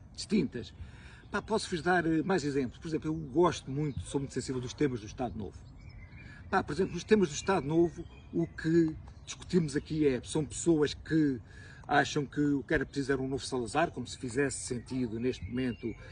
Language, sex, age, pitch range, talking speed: Portuguese, male, 50-69, 125-160 Hz, 185 wpm